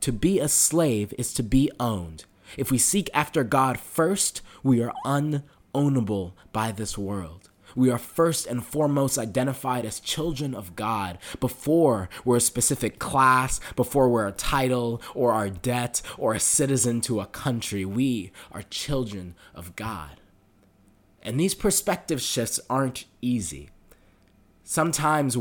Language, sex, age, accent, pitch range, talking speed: English, male, 20-39, American, 105-145 Hz, 140 wpm